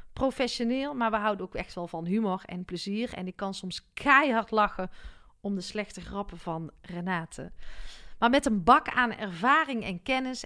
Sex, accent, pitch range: female, Dutch, 190-265 Hz